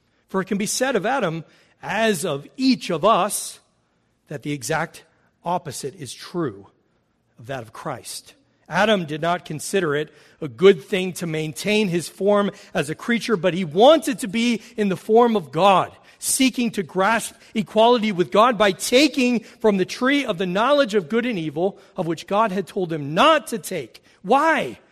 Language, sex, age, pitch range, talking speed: English, male, 40-59, 140-215 Hz, 180 wpm